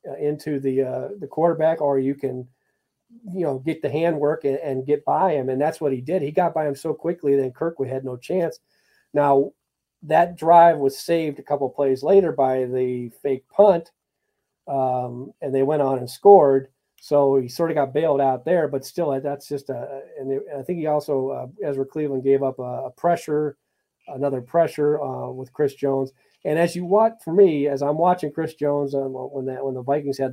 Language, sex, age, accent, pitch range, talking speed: English, male, 40-59, American, 135-160 Hz, 205 wpm